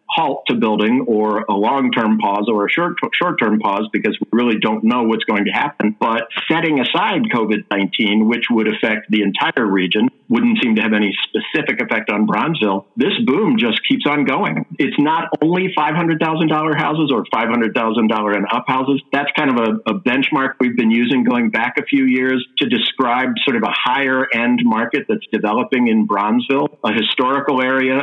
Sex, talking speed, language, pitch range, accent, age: male, 180 wpm, English, 110-155 Hz, American, 50-69